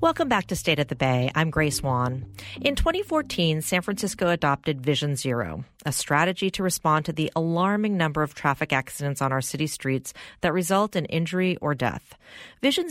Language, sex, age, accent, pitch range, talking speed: English, female, 40-59, American, 140-185 Hz, 180 wpm